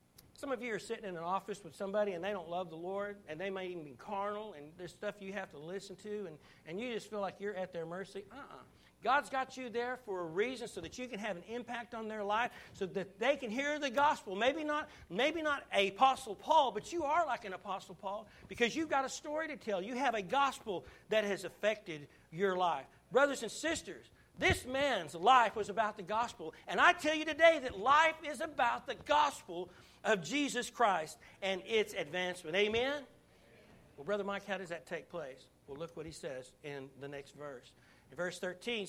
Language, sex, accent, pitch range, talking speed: English, male, American, 170-245 Hz, 220 wpm